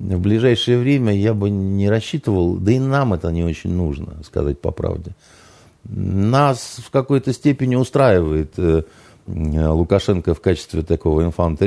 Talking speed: 145 wpm